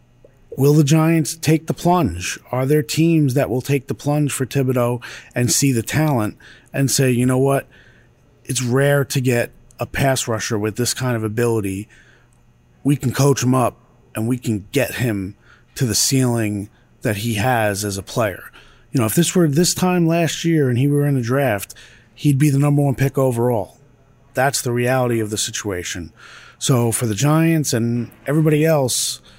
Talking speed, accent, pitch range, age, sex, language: 185 wpm, American, 120-150 Hz, 30-49, male, English